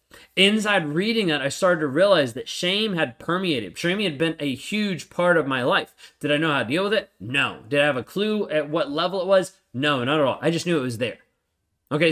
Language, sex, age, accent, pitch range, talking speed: English, male, 20-39, American, 135-170 Hz, 250 wpm